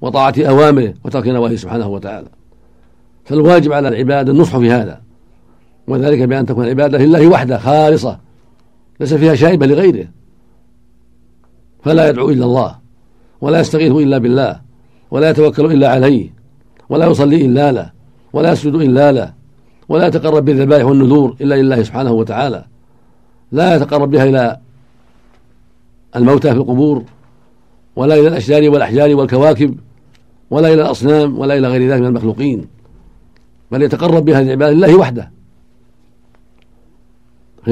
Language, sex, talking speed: Arabic, male, 125 wpm